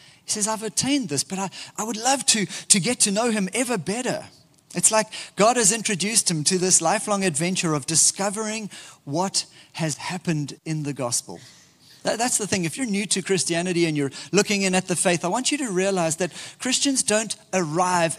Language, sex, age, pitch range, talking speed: English, male, 40-59, 155-195 Hz, 200 wpm